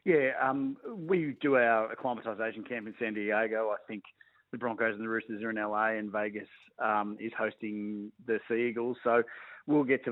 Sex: male